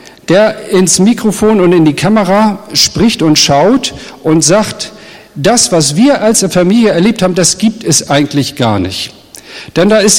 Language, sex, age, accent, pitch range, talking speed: German, male, 50-69, German, 175-235 Hz, 165 wpm